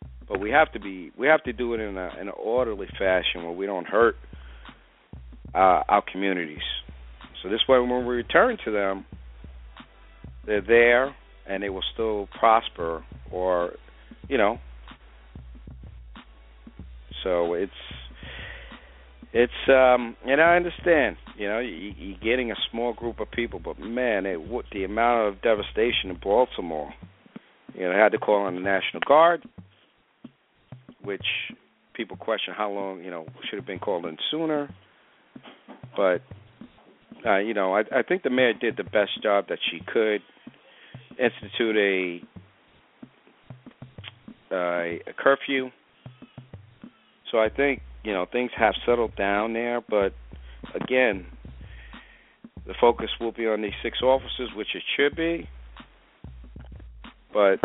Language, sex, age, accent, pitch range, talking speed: English, male, 50-69, American, 75-120 Hz, 140 wpm